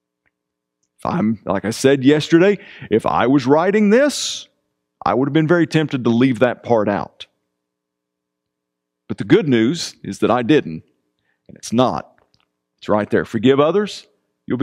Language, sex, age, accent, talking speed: English, male, 40-59, American, 155 wpm